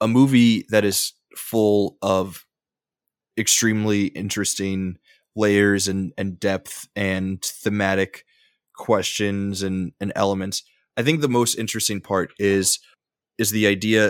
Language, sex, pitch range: English, male, 95-110 Hz